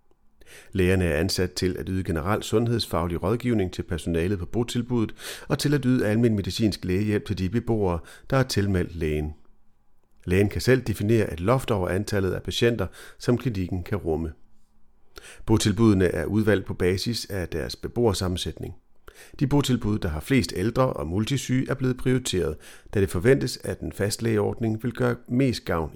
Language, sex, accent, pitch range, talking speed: Danish, male, native, 90-120 Hz, 160 wpm